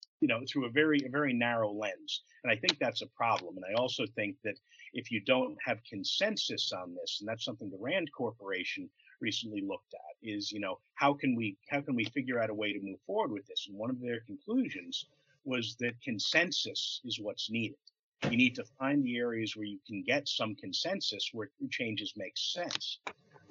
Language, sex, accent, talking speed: English, male, American, 205 wpm